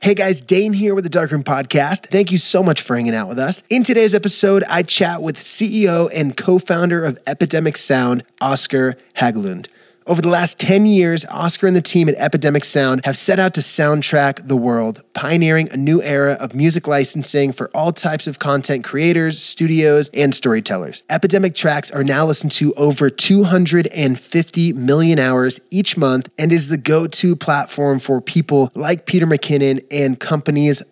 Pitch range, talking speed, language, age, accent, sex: 130-165 Hz, 175 wpm, English, 20-39, American, male